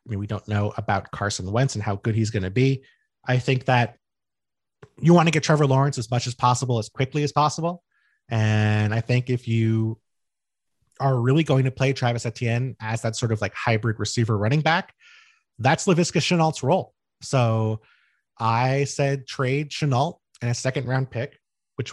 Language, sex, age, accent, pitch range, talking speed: English, male, 30-49, American, 110-135 Hz, 185 wpm